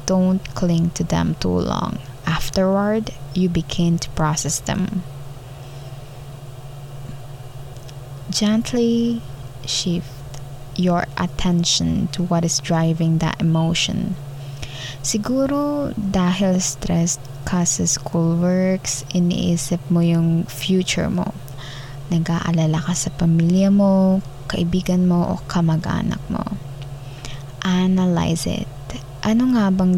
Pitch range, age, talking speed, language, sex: 140-185 Hz, 20-39, 95 wpm, Filipino, female